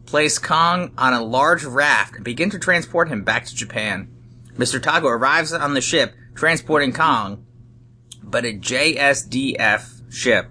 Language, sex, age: English, male, 30-49